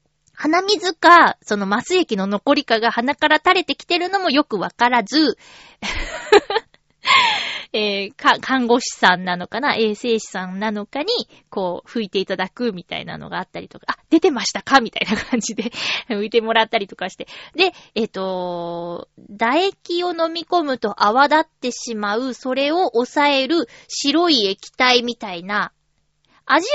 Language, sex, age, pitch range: Japanese, female, 20-39, 205-330 Hz